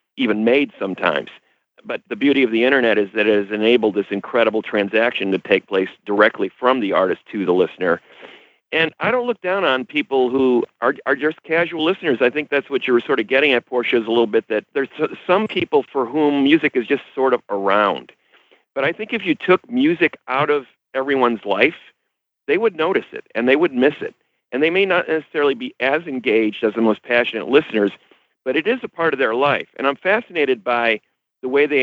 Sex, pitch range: male, 115-150 Hz